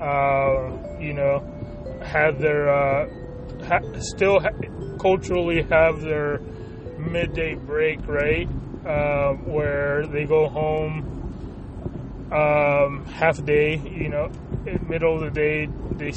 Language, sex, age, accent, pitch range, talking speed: English, male, 20-39, American, 135-155 Hz, 125 wpm